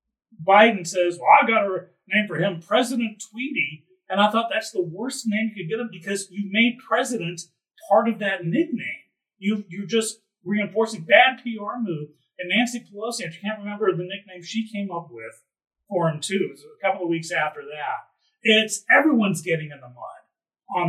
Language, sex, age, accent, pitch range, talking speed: English, male, 40-59, American, 165-220 Hz, 190 wpm